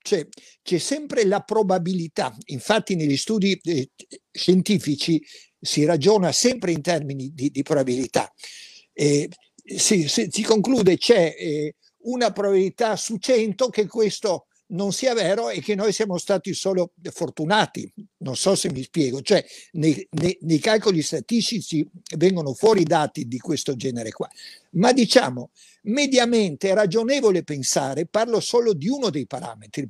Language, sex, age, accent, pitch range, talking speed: Italian, male, 60-79, native, 155-220 Hz, 135 wpm